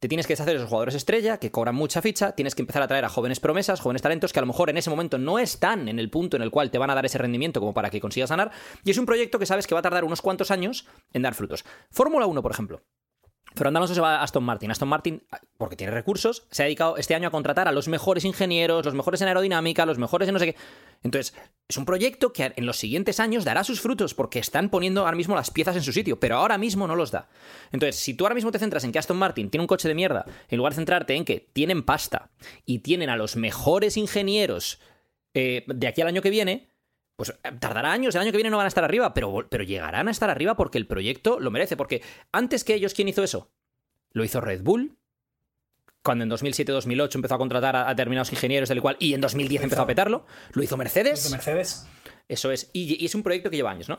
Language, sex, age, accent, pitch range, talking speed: Spanish, male, 20-39, Spanish, 135-195 Hz, 260 wpm